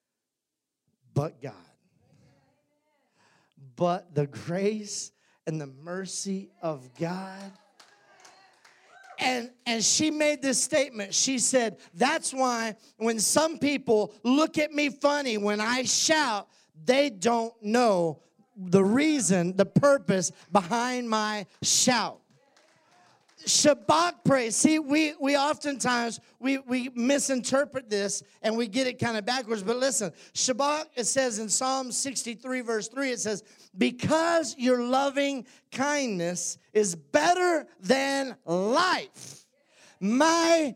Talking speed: 115 wpm